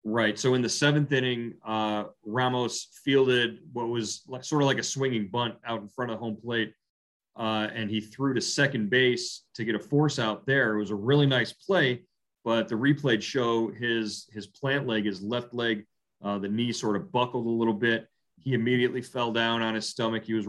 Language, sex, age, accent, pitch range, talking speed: English, male, 30-49, American, 100-120 Hz, 215 wpm